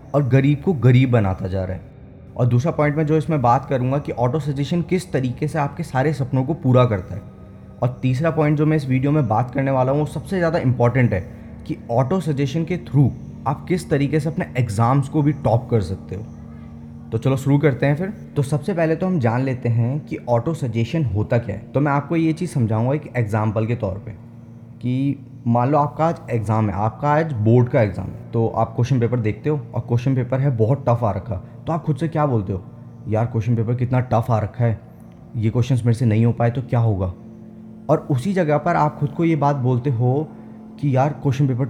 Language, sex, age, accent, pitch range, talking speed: Hindi, male, 20-39, native, 115-150 Hz, 230 wpm